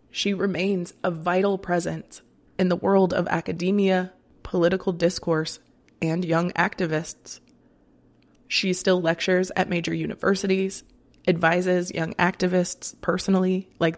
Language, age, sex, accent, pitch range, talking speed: English, 20-39, female, American, 165-190 Hz, 110 wpm